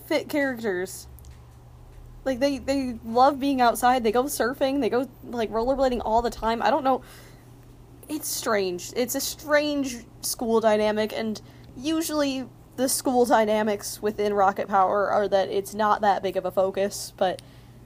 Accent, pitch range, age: American, 200-265 Hz, 20-39